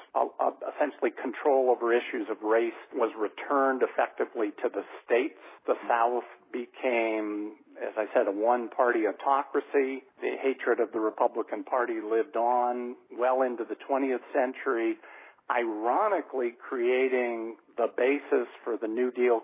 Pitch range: 115-135 Hz